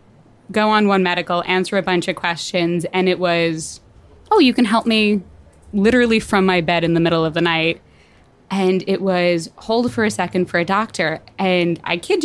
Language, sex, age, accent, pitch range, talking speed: English, female, 20-39, American, 170-205 Hz, 195 wpm